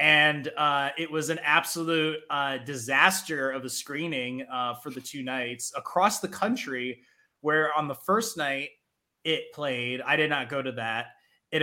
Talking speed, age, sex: 170 wpm, 20-39, male